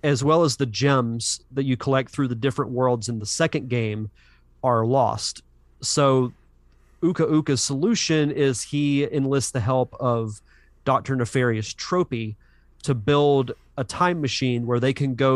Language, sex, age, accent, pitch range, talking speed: English, male, 30-49, American, 115-145 Hz, 155 wpm